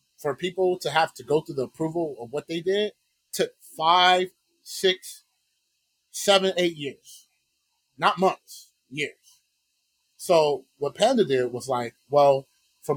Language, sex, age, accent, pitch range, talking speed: English, male, 30-49, American, 135-185 Hz, 140 wpm